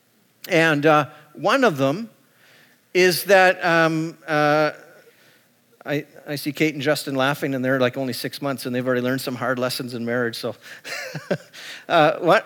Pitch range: 145-195 Hz